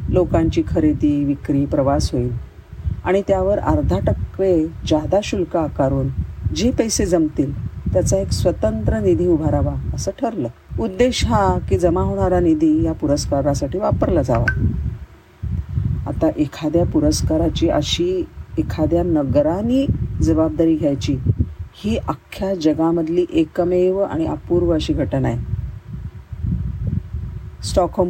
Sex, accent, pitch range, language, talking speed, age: female, native, 105-160 Hz, Marathi, 105 wpm, 40-59